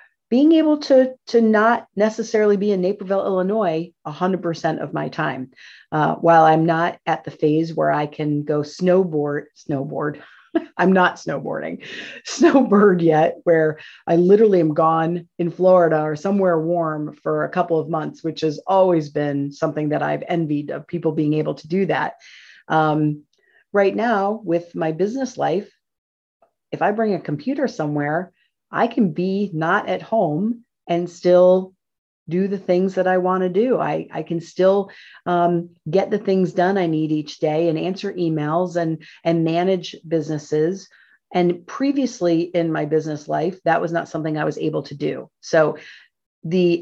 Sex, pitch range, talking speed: female, 160-210 Hz, 165 wpm